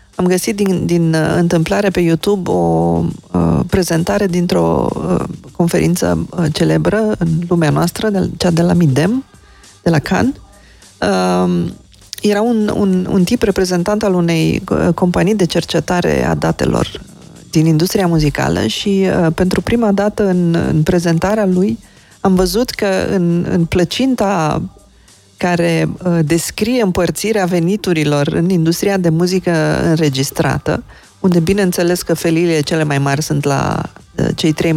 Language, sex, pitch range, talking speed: Romanian, female, 160-205 Hz, 140 wpm